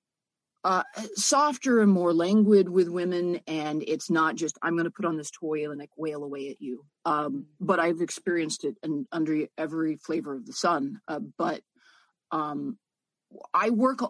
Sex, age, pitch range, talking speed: female, 40-59, 160-210 Hz, 175 wpm